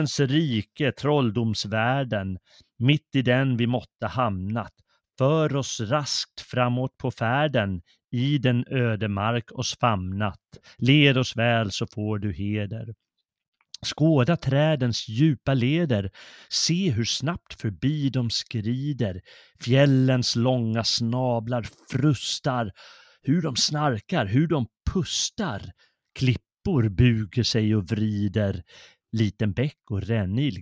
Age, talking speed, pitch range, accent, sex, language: 30-49, 110 wpm, 110-145 Hz, native, male, Swedish